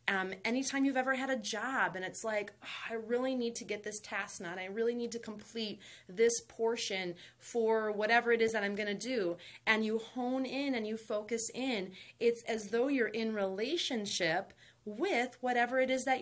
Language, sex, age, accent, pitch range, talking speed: English, female, 30-49, American, 195-245 Hz, 195 wpm